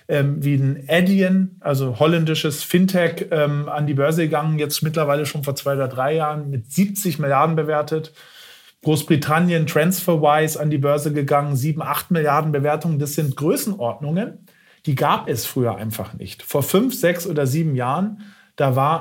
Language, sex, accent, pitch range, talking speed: German, male, German, 135-170 Hz, 155 wpm